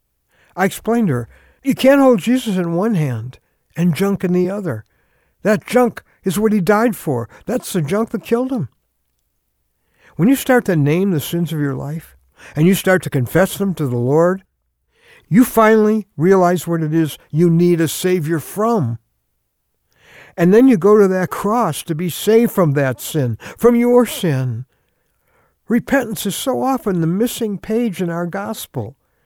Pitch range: 160-220 Hz